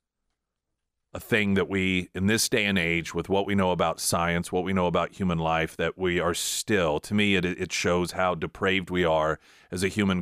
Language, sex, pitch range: English, male, 85-120 Hz